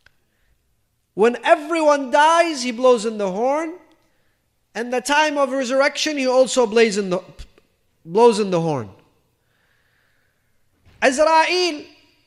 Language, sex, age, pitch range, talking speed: English, male, 40-59, 235-315 Hz, 110 wpm